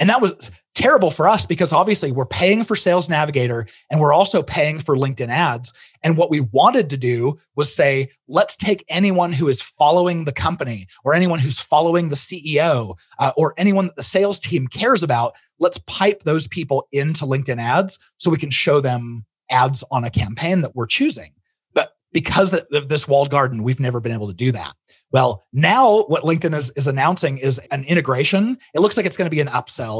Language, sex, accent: English, male, American